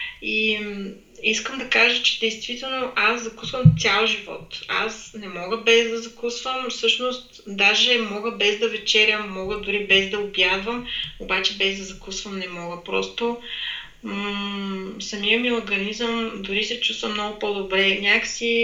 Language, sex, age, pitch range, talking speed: Bulgarian, female, 30-49, 190-235 Hz, 140 wpm